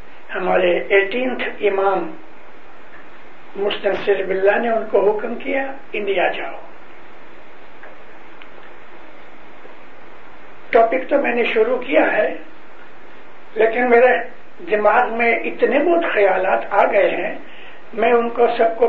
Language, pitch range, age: English, 210-270 Hz, 60-79